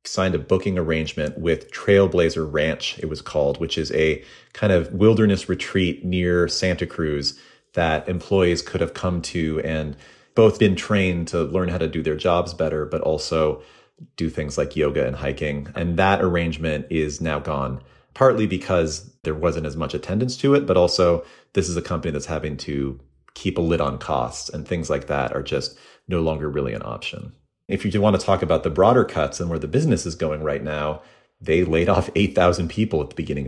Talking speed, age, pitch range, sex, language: 200 wpm, 30-49, 75-90 Hz, male, English